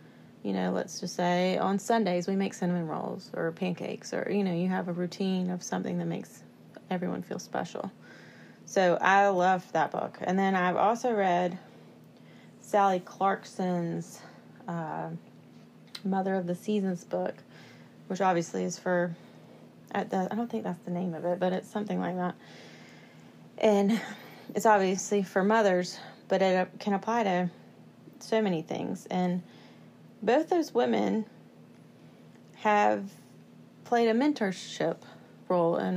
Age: 30-49